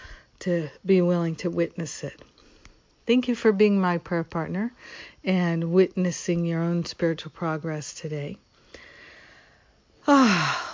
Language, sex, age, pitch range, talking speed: English, female, 50-69, 165-190 Hz, 115 wpm